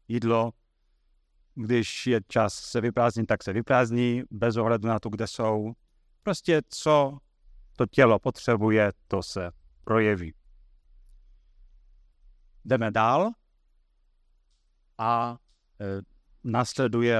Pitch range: 85-120 Hz